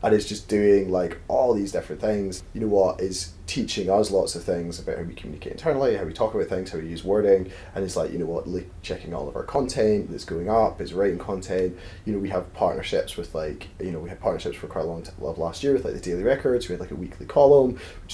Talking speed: 270 wpm